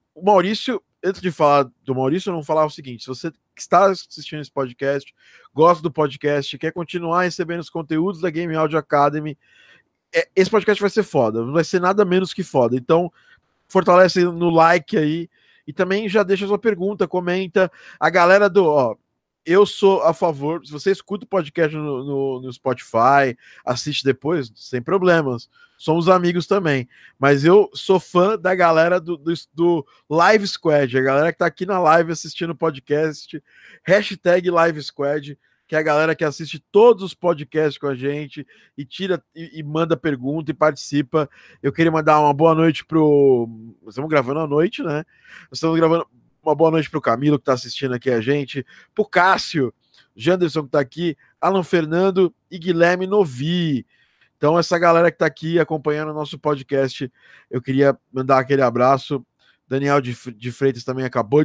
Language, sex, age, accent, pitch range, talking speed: Portuguese, male, 20-39, Brazilian, 140-180 Hz, 175 wpm